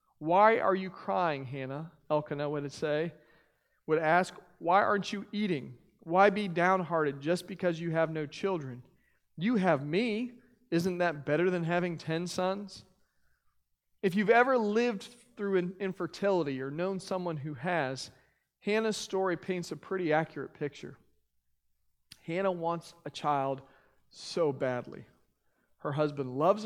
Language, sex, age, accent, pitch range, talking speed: English, male, 40-59, American, 150-200 Hz, 135 wpm